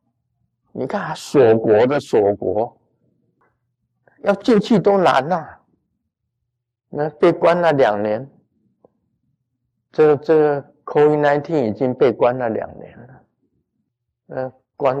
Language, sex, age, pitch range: Chinese, male, 50-69, 110-130 Hz